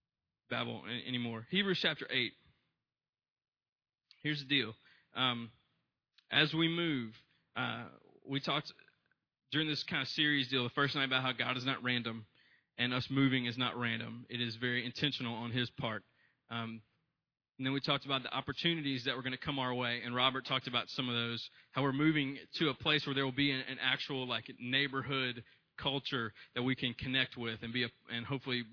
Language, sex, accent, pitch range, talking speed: English, male, American, 120-145 Hz, 185 wpm